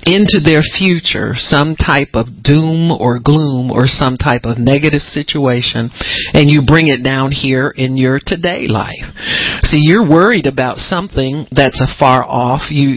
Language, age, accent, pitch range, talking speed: English, 50-69, American, 125-155 Hz, 160 wpm